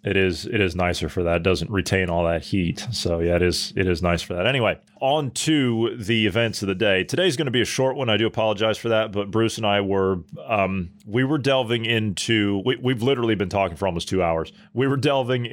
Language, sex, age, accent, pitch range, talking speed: English, male, 30-49, American, 95-115 Hz, 240 wpm